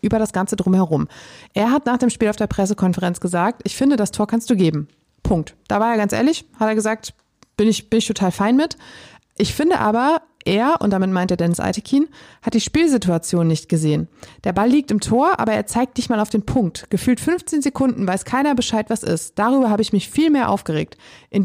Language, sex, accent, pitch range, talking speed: German, female, German, 200-255 Hz, 225 wpm